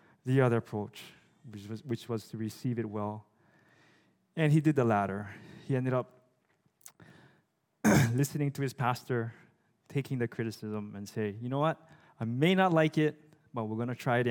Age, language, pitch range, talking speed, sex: 20-39, English, 115-150 Hz, 170 wpm, male